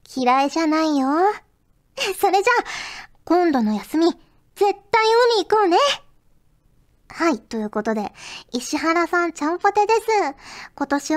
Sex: male